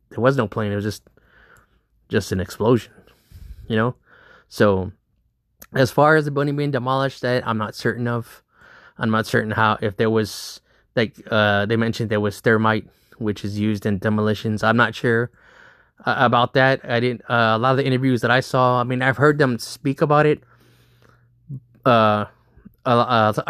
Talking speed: 180 wpm